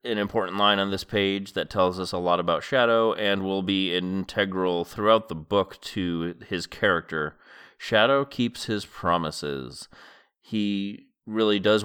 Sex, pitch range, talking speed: male, 95-120 Hz, 150 wpm